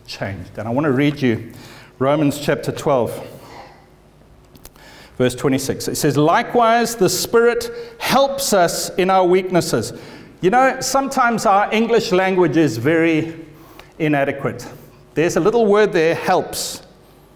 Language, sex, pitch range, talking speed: English, male, 130-185 Hz, 130 wpm